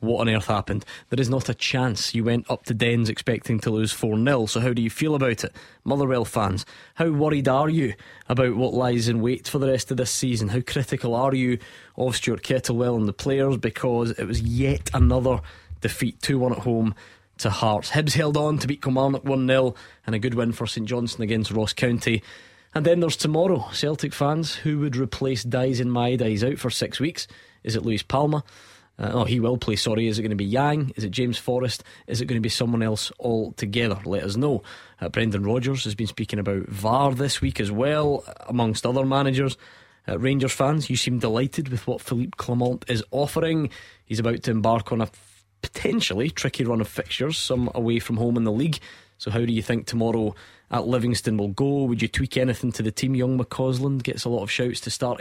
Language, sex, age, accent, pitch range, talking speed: English, male, 20-39, British, 110-130 Hz, 215 wpm